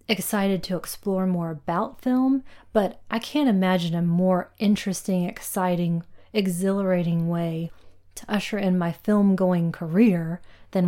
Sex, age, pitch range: female, 30-49, 175-220 Hz